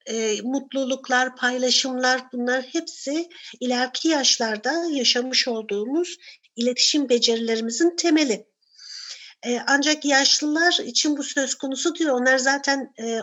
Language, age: Turkish, 50-69